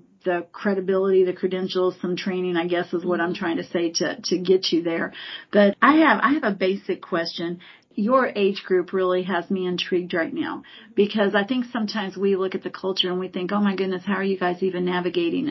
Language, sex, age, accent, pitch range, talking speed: English, female, 40-59, American, 180-210 Hz, 220 wpm